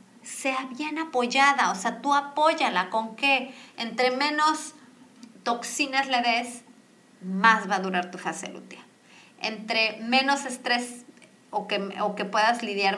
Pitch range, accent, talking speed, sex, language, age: 195-245 Hz, Mexican, 140 wpm, female, Spanish, 30-49